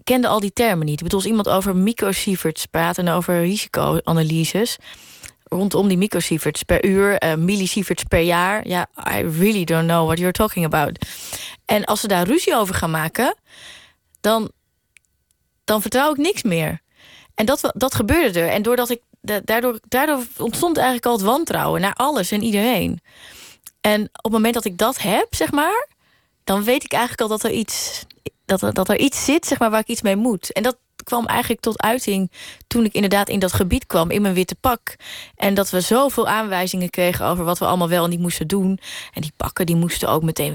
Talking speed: 205 wpm